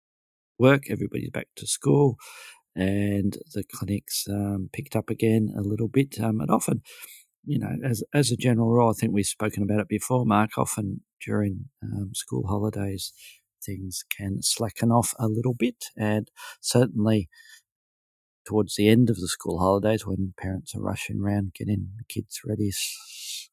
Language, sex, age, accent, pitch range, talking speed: English, male, 40-59, Australian, 100-125 Hz, 165 wpm